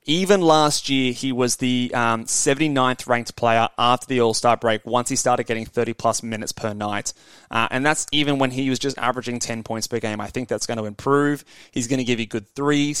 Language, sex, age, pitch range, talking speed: English, male, 20-39, 115-140 Hz, 225 wpm